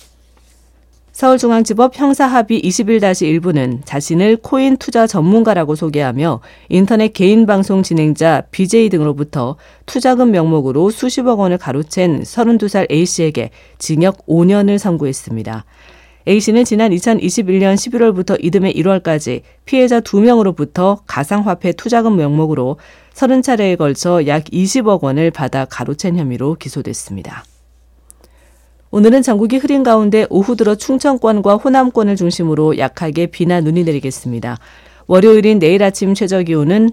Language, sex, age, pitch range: Korean, female, 40-59, 145-215 Hz